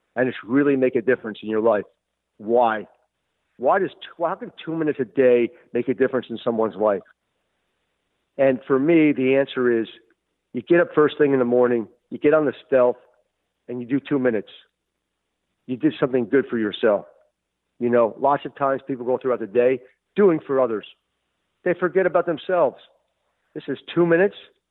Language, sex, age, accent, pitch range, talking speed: English, male, 50-69, American, 125-170 Hz, 180 wpm